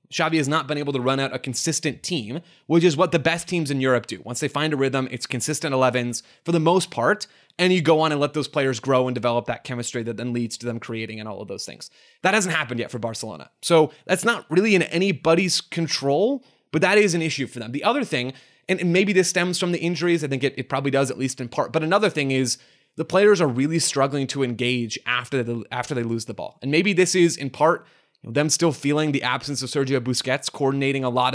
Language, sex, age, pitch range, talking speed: English, male, 20-39, 125-165 Hz, 245 wpm